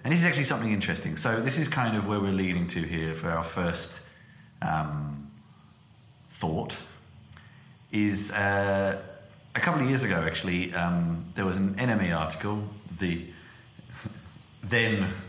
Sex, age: male, 30-49